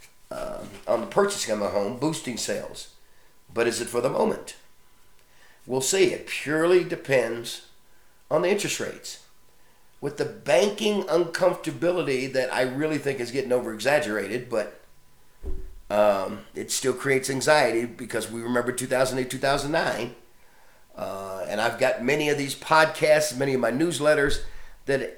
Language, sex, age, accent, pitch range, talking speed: English, male, 50-69, American, 125-175 Hz, 135 wpm